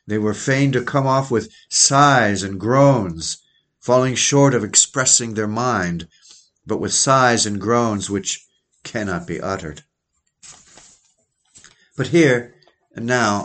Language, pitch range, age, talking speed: English, 110-140 Hz, 50-69, 130 wpm